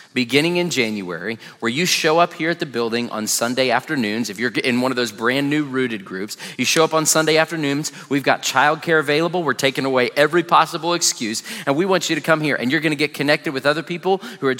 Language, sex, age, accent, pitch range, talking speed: English, male, 30-49, American, 135-165 Hz, 235 wpm